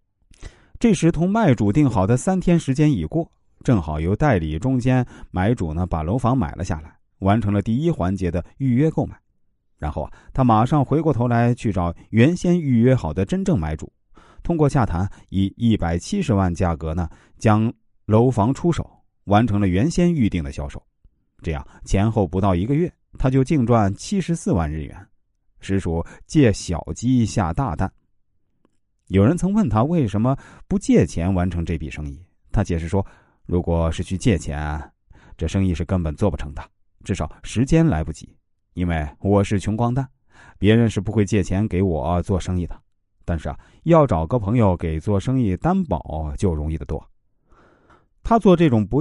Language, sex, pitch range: Chinese, male, 90-130 Hz